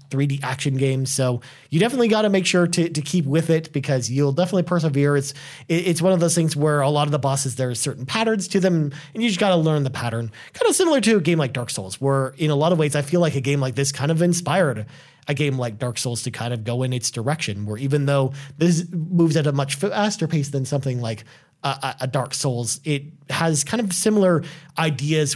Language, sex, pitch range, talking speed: English, male, 130-175 Hz, 250 wpm